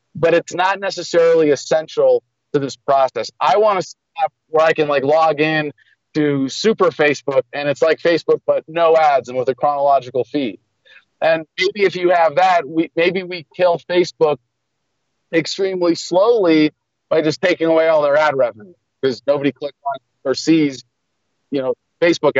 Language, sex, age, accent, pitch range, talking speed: English, male, 40-59, American, 130-170 Hz, 170 wpm